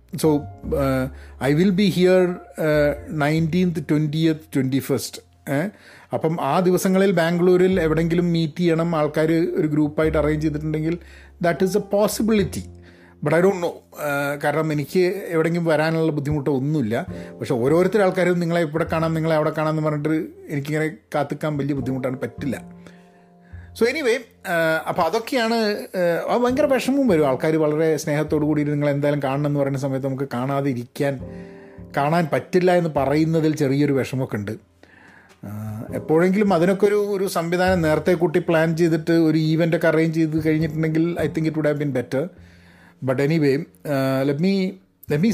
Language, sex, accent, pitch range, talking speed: Malayalam, male, native, 140-175 Hz, 140 wpm